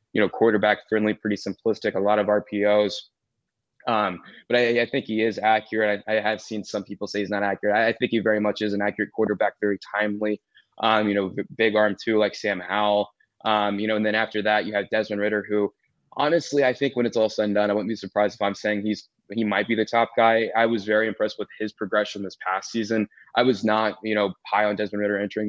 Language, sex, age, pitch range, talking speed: English, male, 20-39, 105-110 Hz, 245 wpm